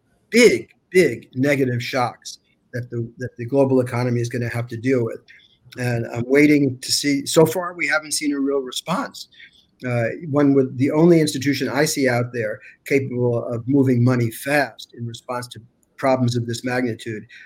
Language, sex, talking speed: English, male, 180 wpm